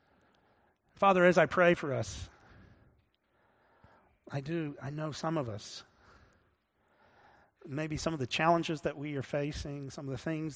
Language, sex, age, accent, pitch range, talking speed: English, male, 40-59, American, 115-155 Hz, 150 wpm